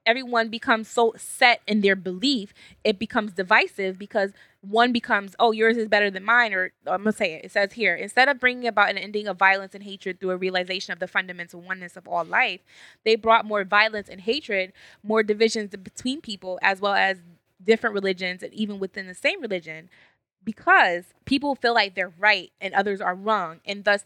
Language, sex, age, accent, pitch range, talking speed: English, female, 20-39, American, 190-230 Hz, 205 wpm